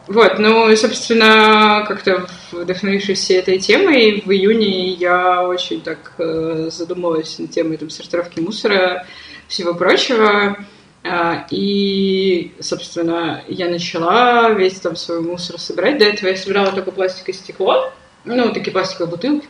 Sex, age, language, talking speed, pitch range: female, 20-39, Russian, 125 wpm, 175-210 Hz